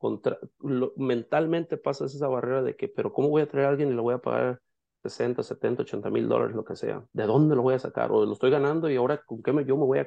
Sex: male